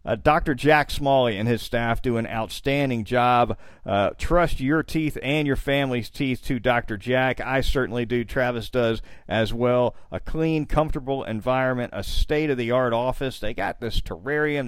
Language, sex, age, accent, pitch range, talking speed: English, male, 50-69, American, 115-145 Hz, 165 wpm